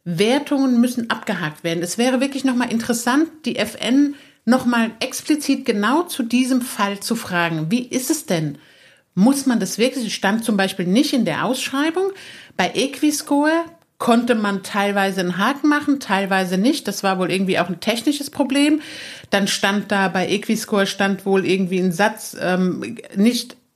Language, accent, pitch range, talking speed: German, German, 195-255 Hz, 170 wpm